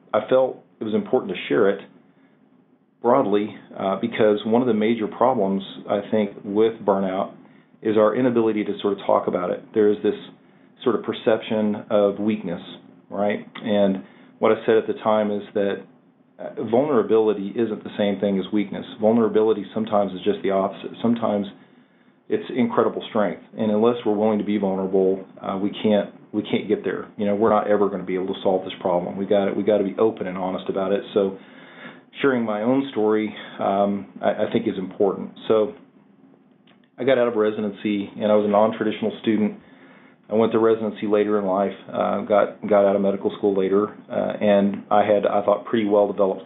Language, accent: English, American